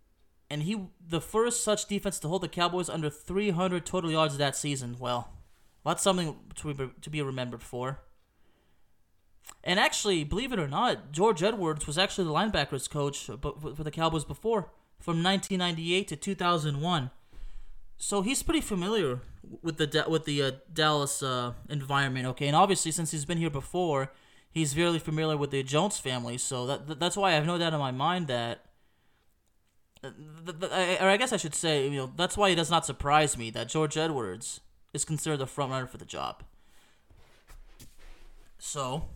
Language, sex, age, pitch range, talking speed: English, male, 20-39, 140-180 Hz, 175 wpm